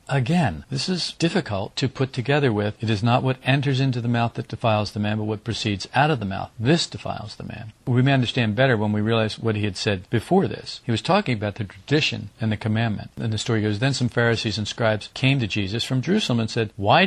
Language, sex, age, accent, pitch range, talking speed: English, male, 50-69, American, 105-130 Hz, 245 wpm